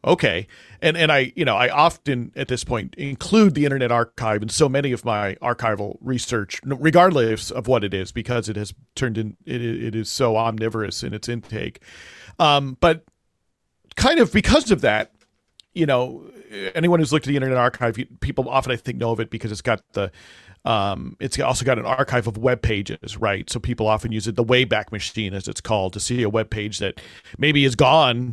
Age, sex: 40-59, male